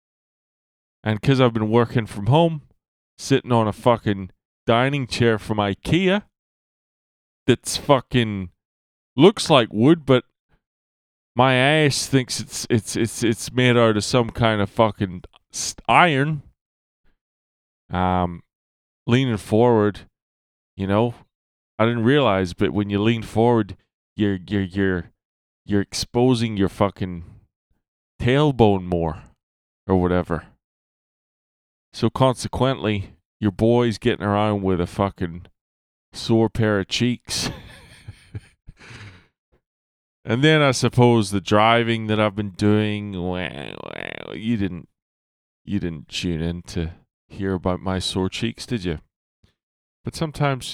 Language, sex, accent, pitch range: English, male, American, 90-115 Hz